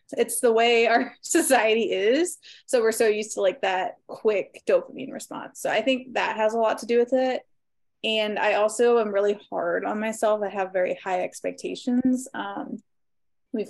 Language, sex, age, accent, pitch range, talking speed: English, female, 20-39, American, 205-245 Hz, 185 wpm